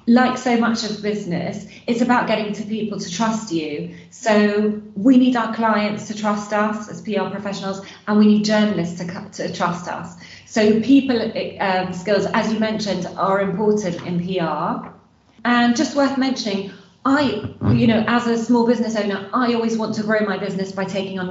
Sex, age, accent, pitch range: female, 30-49, British, 185-230 Hz